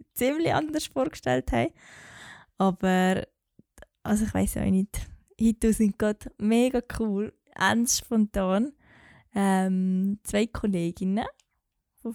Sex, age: female, 10-29